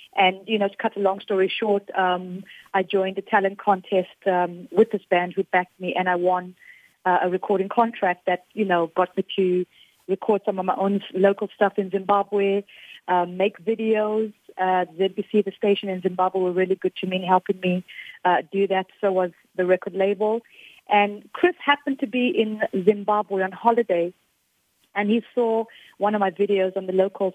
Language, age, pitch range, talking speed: English, 30-49, 185-215 Hz, 195 wpm